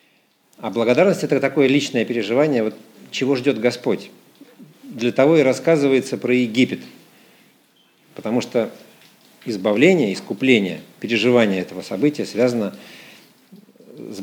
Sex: male